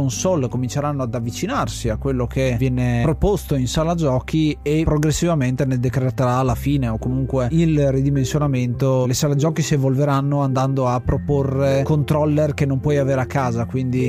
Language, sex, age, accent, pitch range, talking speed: Italian, male, 30-49, native, 130-155 Hz, 160 wpm